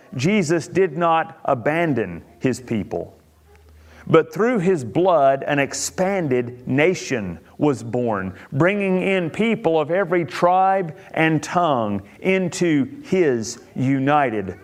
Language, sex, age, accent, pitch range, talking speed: English, male, 40-59, American, 125-180 Hz, 105 wpm